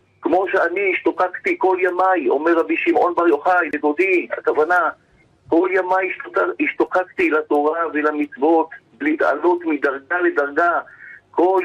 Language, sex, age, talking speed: Hebrew, male, 50-69, 110 wpm